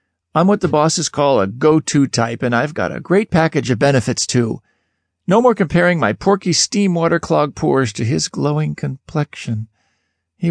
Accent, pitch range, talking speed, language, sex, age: American, 115-165 Hz, 170 wpm, English, male, 50-69